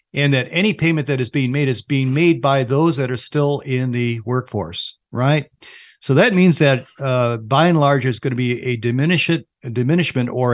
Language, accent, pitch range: English, American, 120-150 Hz